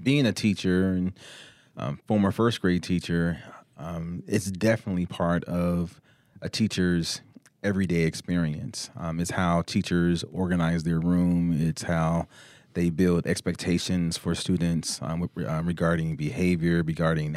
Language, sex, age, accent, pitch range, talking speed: English, male, 30-49, American, 85-100 Hz, 125 wpm